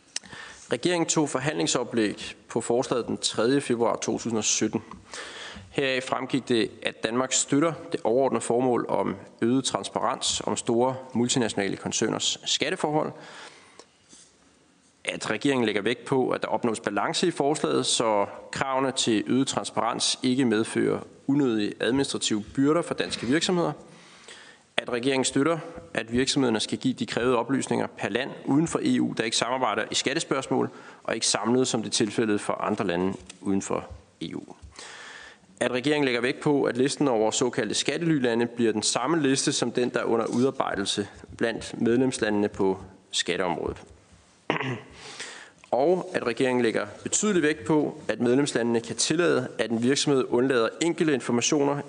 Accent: native